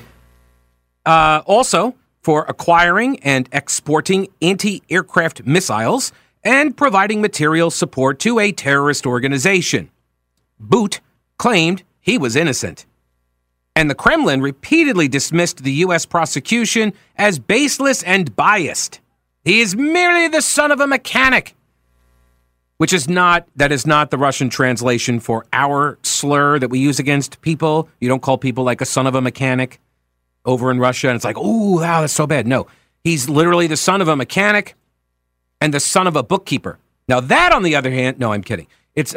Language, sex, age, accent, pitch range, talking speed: English, male, 40-59, American, 125-180 Hz, 155 wpm